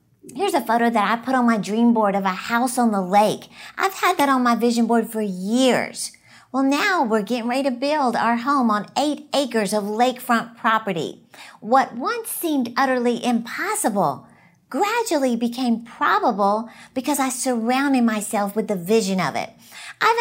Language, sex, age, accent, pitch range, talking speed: English, female, 50-69, American, 220-305 Hz, 170 wpm